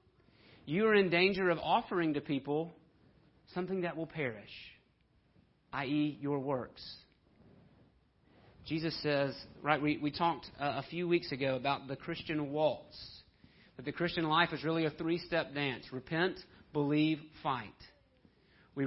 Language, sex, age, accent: English, male, 40-59, American